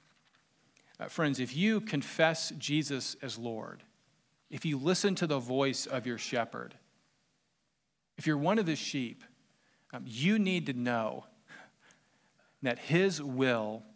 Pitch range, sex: 125-165 Hz, male